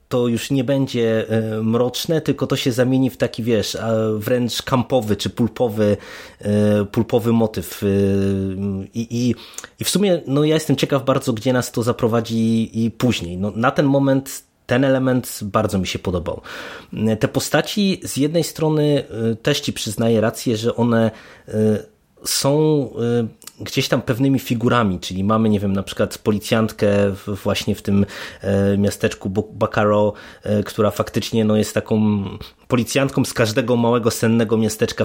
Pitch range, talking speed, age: 105-130 Hz, 140 wpm, 30-49